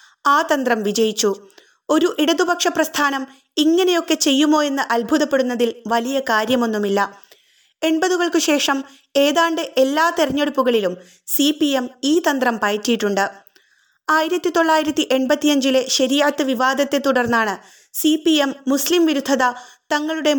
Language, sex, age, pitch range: Malayalam, female, 20-39, 245-305 Hz